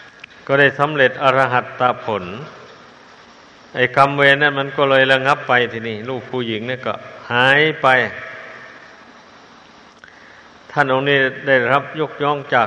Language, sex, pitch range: Thai, male, 125-140 Hz